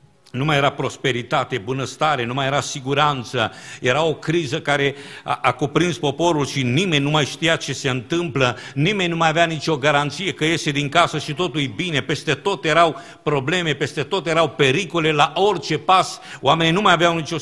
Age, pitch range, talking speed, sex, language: 50-69, 105-150 Hz, 190 wpm, male, Romanian